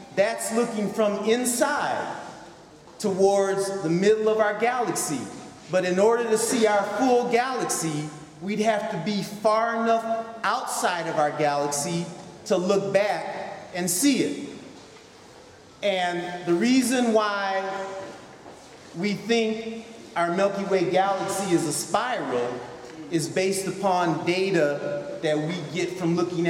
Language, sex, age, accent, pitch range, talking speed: English, male, 30-49, American, 165-210 Hz, 125 wpm